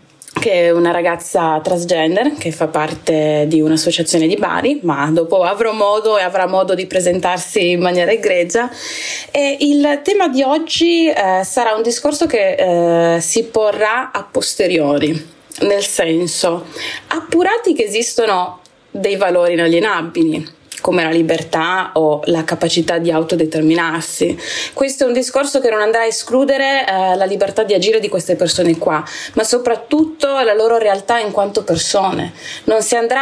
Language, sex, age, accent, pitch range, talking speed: Italian, female, 20-39, native, 170-245 Hz, 150 wpm